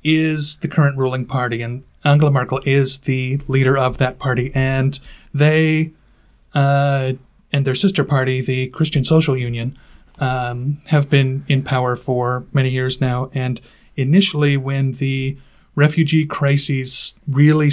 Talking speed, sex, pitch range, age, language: 140 wpm, male, 130-145 Hz, 40-59, English